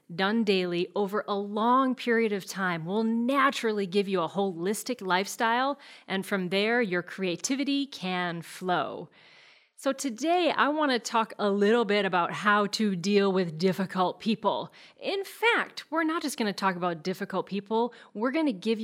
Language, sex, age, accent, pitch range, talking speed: English, female, 40-59, American, 185-245 Hz, 160 wpm